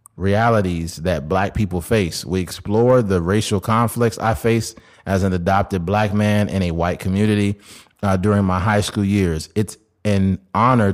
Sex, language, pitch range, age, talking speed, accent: male, English, 90-110 Hz, 30-49, 165 wpm, American